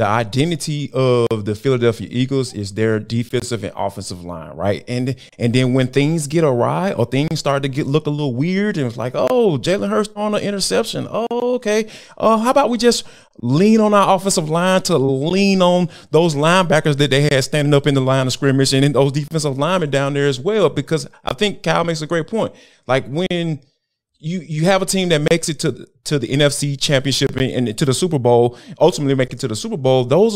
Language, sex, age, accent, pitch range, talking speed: English, male, 30-49, American, 130-190 Hz, 220 wpm